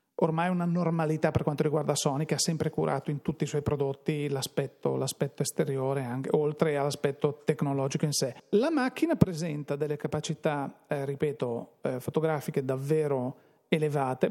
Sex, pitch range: male, 150-185 Hz